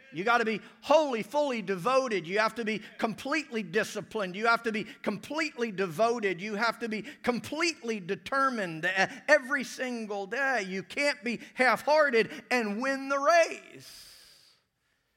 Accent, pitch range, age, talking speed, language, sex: American, 190-265 Hz, 50-69, 140 wpm, English, male